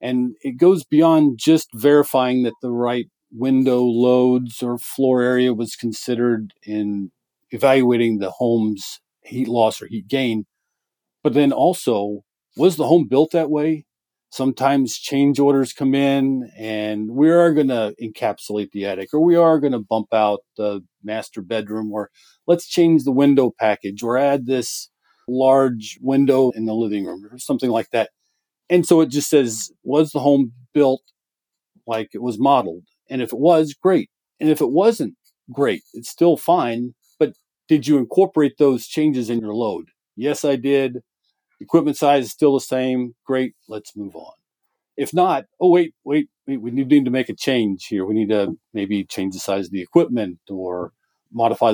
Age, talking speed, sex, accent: 40-59, 175 wpm, male, American